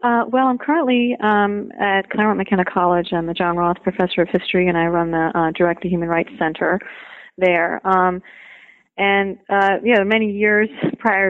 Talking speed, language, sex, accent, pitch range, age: 185 wpm, English, female, American, 170-195 Hz, 30-49